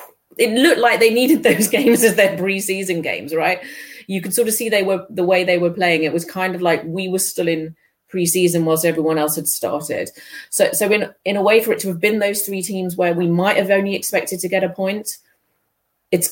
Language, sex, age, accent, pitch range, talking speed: English, female, 30-49, British, 155-190 Hz, 235 wpm